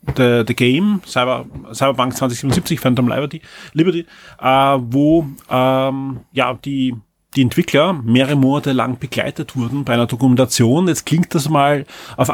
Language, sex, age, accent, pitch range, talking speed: German, male, 30-49, German, 130-155 Hz, 135 wpm